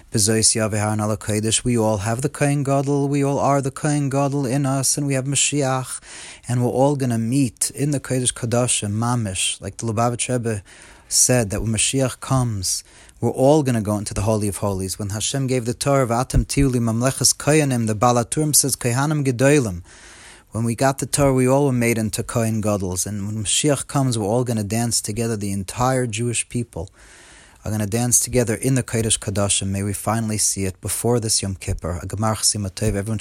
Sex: male